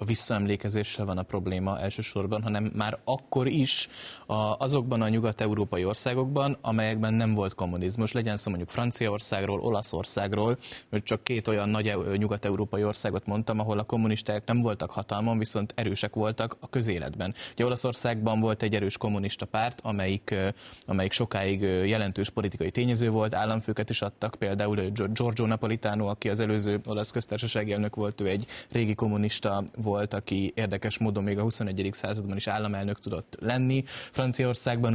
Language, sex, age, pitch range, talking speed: Hungarian, male, 20-39, 100-120 Hz, 145 wpm